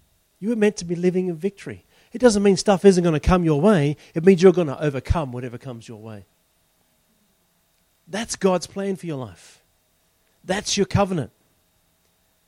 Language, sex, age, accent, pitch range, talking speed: English, male, 40-59, Australian, 165-230 Hz, 180 wpm